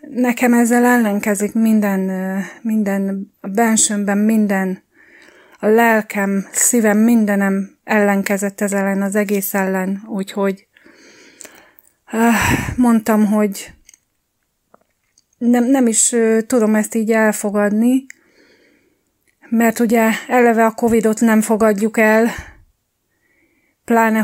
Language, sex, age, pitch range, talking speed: English, female, 30-49, 205-235 Hz, 95 wpm